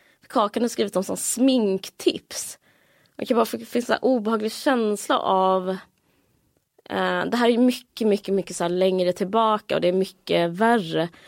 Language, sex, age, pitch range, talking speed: Swedish, female, 20-39, 180-225 Hz, 160 wpm